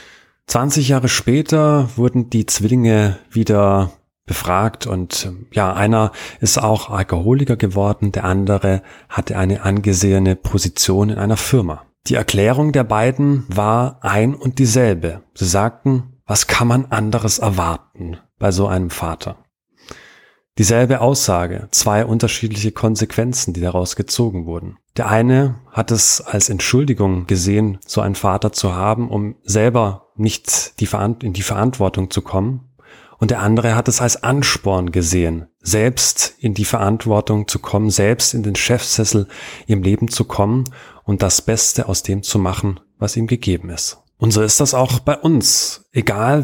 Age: 30-49